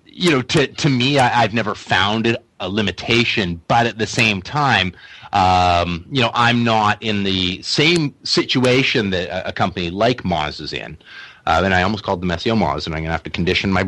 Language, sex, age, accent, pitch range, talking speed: English, male, 30-49, American, 90-125 Hz, 200 wpm